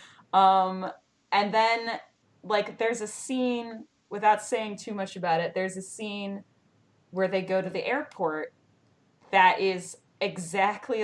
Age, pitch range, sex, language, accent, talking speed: 20-39, 180-235 Hz, female, English, American, 135 wpm